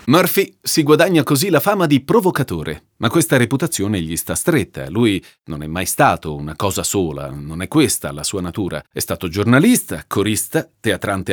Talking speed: 175 wpm